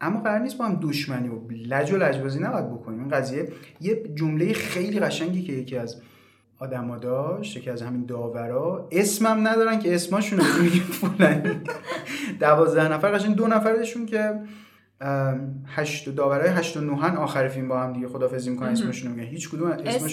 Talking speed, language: 150 wpm, Persian